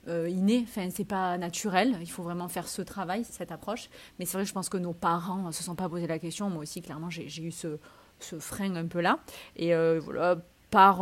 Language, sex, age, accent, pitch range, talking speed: French, female, 30-49, French, 180-225 Hz, 250 wpm